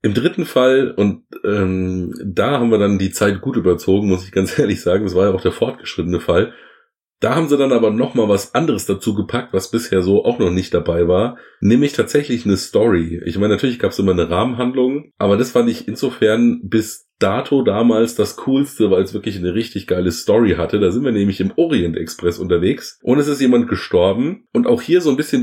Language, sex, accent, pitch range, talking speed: German, male, German, 95-125 Hz, 215 wpm